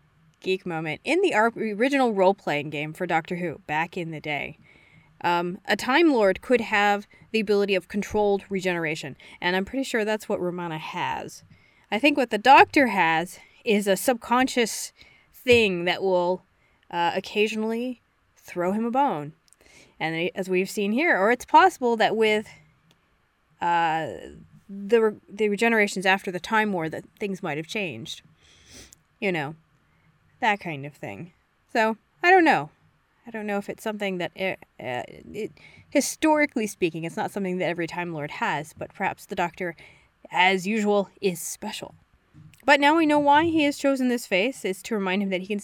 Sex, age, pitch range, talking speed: female, 20-39, 175-245 Hz, 170 wpm